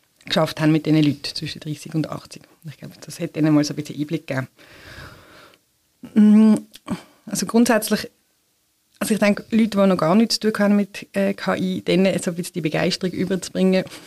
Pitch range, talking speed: 160-195 Hz, 180 wpm